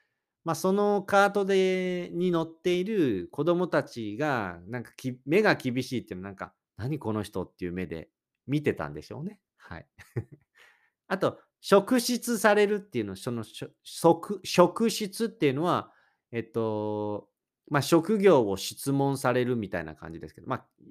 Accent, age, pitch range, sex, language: native, 40-59, 105-175 Hz, male, Japanese